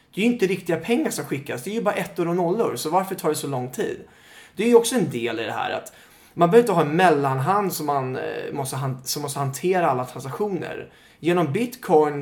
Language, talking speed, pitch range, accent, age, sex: English, 225 wpm, 140-190 Hz, Swedish, 20-39, male